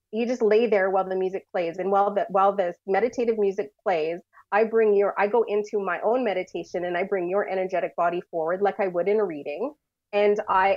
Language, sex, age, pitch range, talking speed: English, female, 30-49, 185-215 Hz, 225 wpm